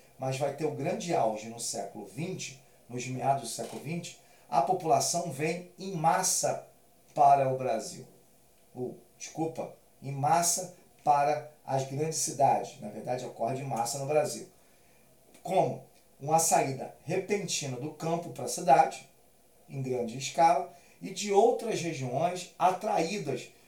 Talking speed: 140 wpm